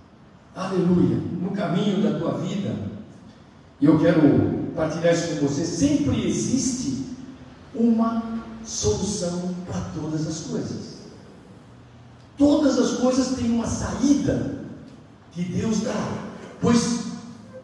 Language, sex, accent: Portuguese, male, Brazilian